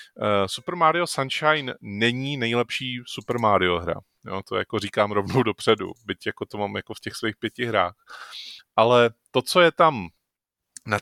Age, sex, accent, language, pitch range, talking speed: 30-49, male, native, Czech, 105-125 Hz, 165 wpm